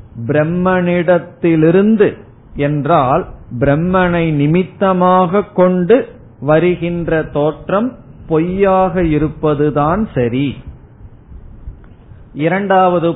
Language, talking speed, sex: Tamil, 50 wpm, male